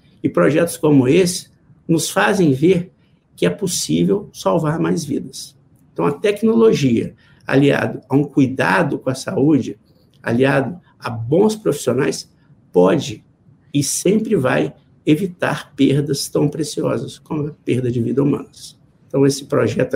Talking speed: 130 wpm